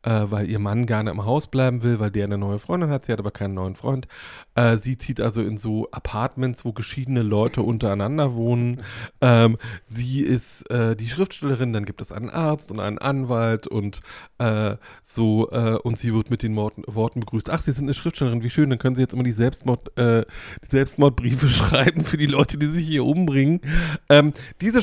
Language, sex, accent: German, male, German